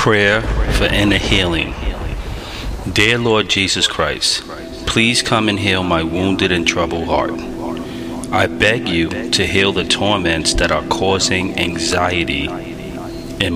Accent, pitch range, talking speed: American, 90-105 Hz, 130 wpm